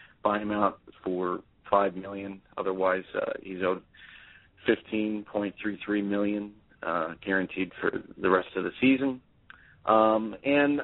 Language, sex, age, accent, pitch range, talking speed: English, male, 40-59, American, 105-135 Hz, 120 wpm